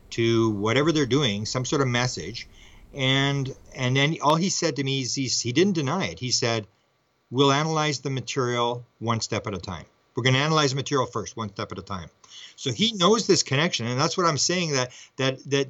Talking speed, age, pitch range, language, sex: 220 wpm, 50-69, 115-135 Hz, English, male